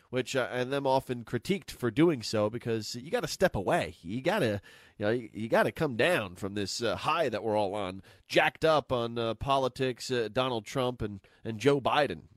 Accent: American